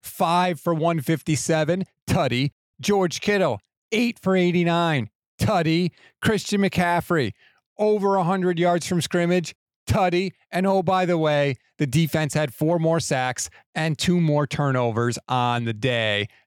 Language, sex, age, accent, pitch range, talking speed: English, male, 40-59, American, 125-165 Hz, 130 wpm